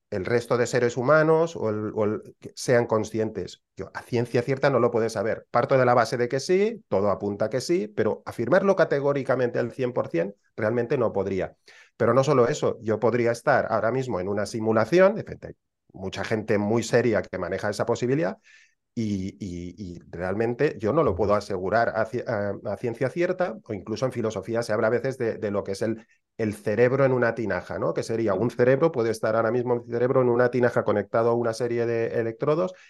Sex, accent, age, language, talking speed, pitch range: male, Spanish, 30-49, Spanish, 205 wpm, 110-140 Hz